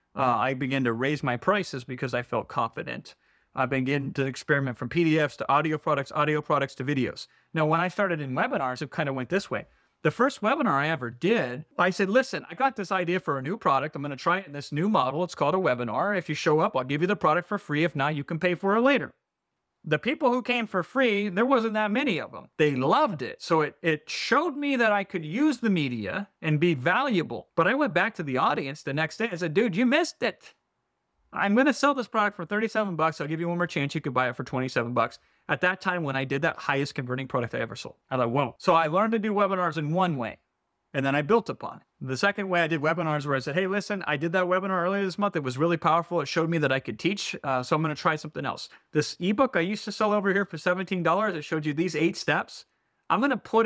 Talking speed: 265 wpm